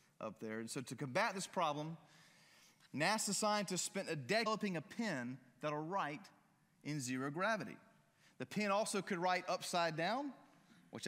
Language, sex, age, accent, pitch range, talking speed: English, male, 30-49, American, 145-200 Hz, 155 wpm